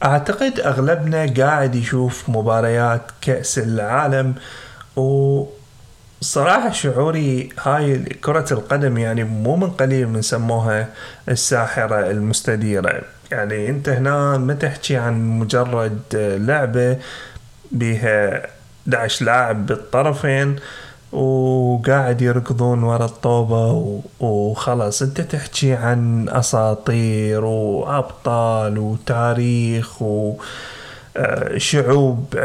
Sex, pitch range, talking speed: male, 115-135 Hz, 80 wpm